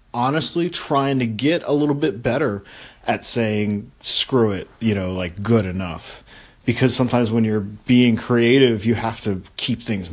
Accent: American